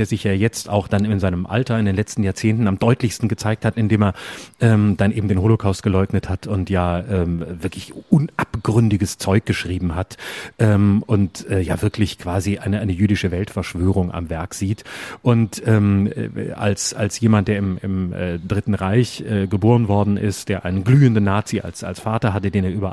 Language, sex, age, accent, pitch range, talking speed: German, male, 30-49, German, 95-110 Hz, 190 wpm